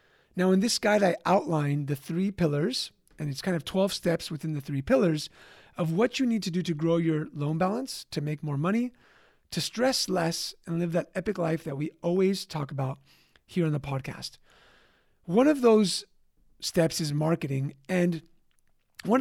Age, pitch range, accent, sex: 30-49, 155-200 Hz, American, male